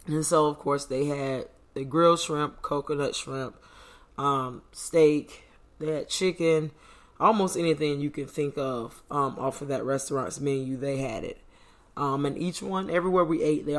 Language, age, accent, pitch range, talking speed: English, 20-39, American, 135-150 Hz, 170 wpm